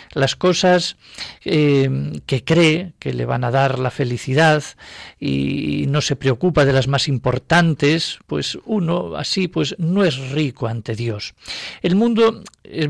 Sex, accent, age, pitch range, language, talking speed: male, Spanish, 50-69, 135-180 Hz, Spanish, 150 wpm